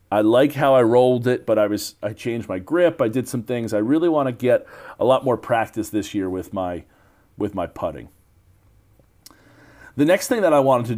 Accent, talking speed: American, 220 wpm